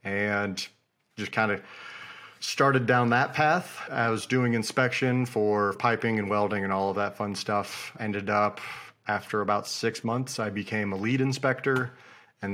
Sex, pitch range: male, 100-115 Hz